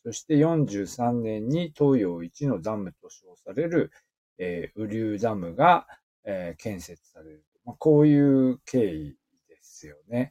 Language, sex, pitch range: Japanese, male, 95-150 Hz